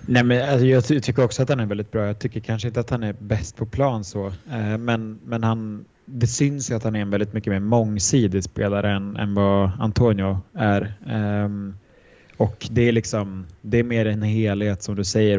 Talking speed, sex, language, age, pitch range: 205 wpm, male, Swedish, 20-39, 100-115 Hz